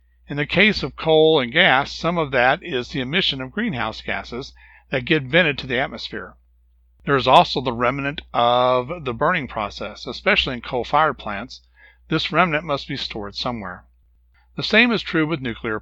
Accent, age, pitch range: American, 60-79, 105-155 Hz